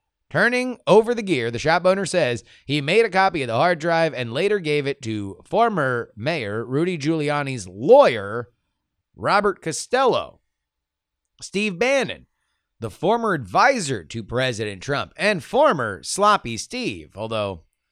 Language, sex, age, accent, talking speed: English, male, 30-49, American, 135 wpm